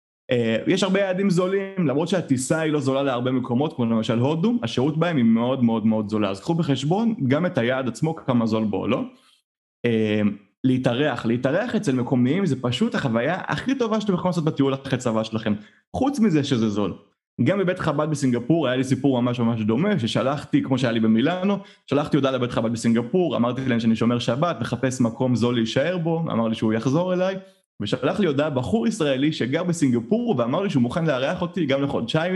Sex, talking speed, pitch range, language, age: male, 180 wpm, 115-170 Hz, Hebrew, 20-39